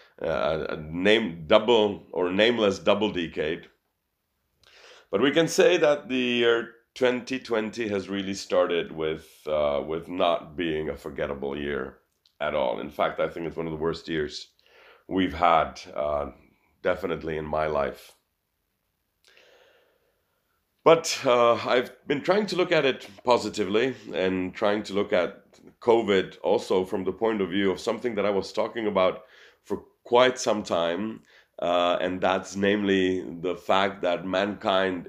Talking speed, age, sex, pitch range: 150 wpm, 40-59, male, 90-110 Hz